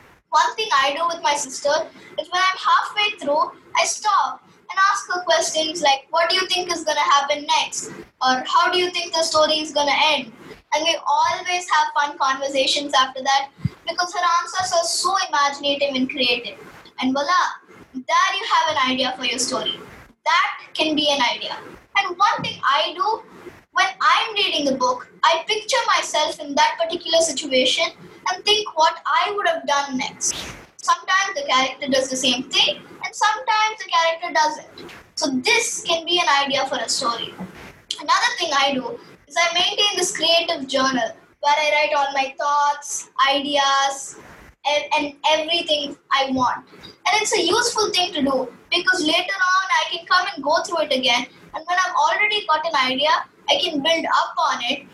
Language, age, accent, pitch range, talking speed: English, 20-39, Indian, 280-360 Hz, 180 wpm